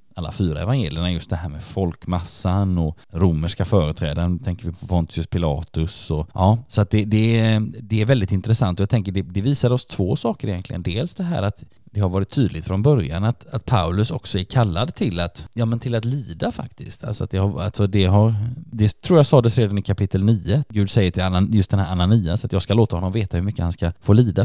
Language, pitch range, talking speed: Swedish, 90-115 Hz, 235 wpm